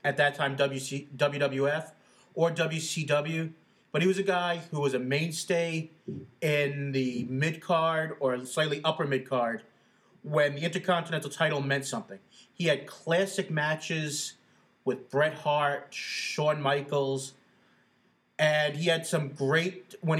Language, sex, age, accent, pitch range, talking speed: English, male, 30-49, American, 135-160 Hz, 130 wpm